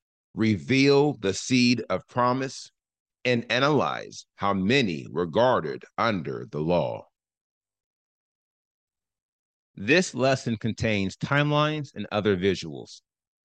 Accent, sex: American, male